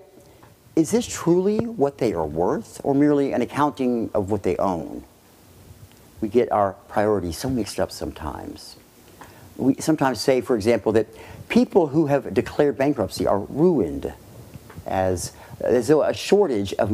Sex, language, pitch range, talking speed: male, English, 95-130 Hz, 150 wpm